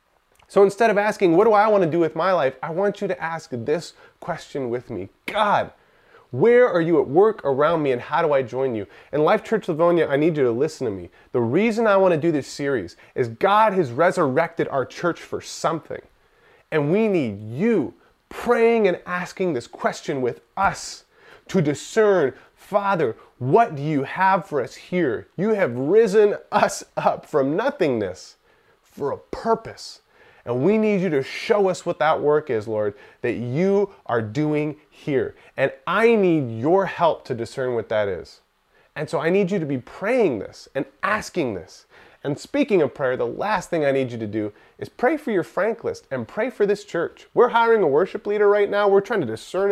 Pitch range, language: 150-230 Hz, English